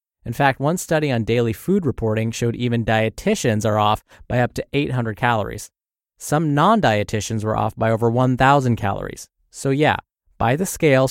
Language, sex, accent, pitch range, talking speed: English, male, American, 110-150 Hz, 165 wpm